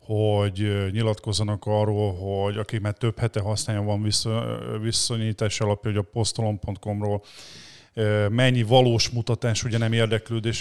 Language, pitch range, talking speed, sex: Hungarian, 105-120 Hz, 120 wpm, male